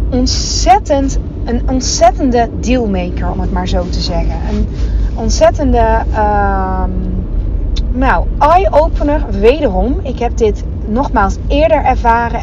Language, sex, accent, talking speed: Dutch, female, Dutch, 100 wpm